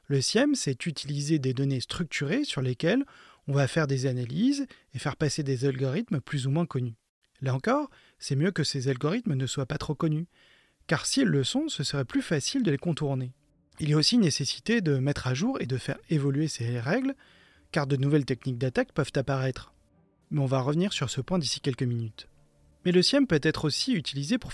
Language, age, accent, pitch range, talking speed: French, 30-49, French, 130-165 Hz, 210 wpm